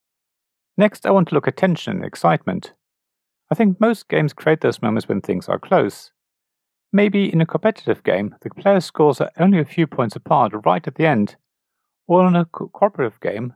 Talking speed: 195 wpm